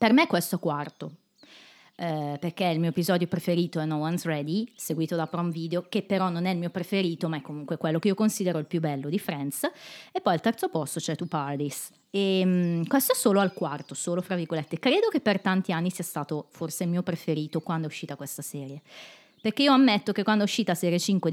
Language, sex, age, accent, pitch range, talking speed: Italian, female, 20-39, native, 150-205 Hz, 225 wpm